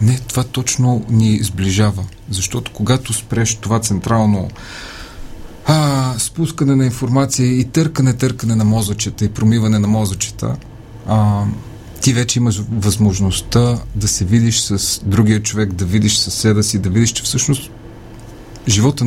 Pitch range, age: 95-115 Hz, 40-59